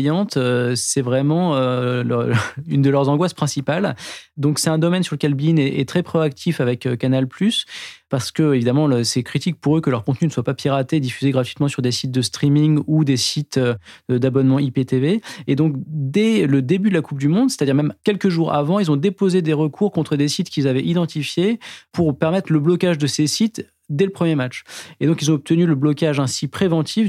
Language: French